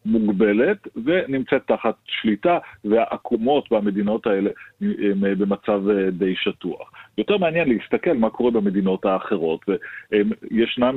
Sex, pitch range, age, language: male, 100-115 Hz, 40-59, Hebrew